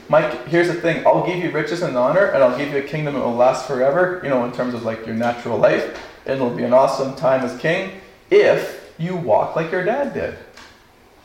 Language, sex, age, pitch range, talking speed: English, male, 40-59, 125-170 Hz, 230 wpm